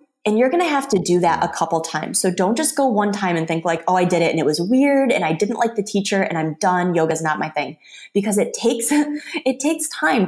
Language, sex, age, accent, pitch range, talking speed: English, female, 20-39, American, 170-225 Hz, 280 wpm